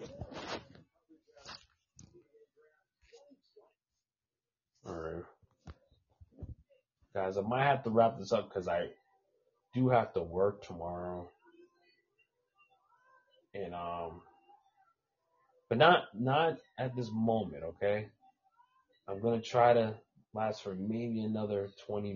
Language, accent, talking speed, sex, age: English, American, 95 wpm, male, 30-49